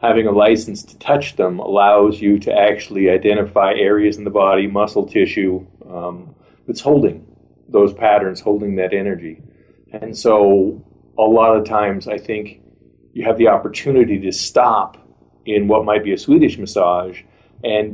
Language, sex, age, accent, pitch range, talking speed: English, male, 40-59, American, 95-105 Hz, 155 wpm